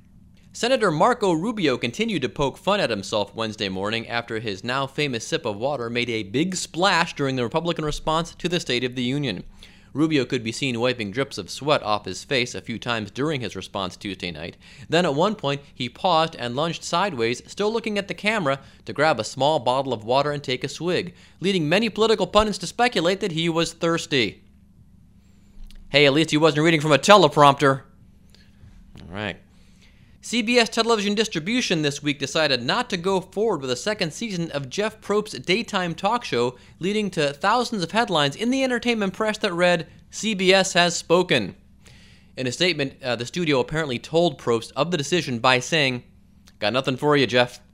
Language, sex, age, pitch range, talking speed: English, male, 30-49, 115-180 Hz, 185 wpm